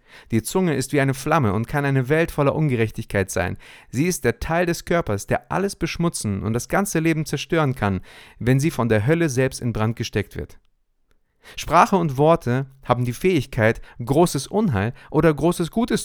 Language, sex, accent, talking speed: German, male, German, 185 wpm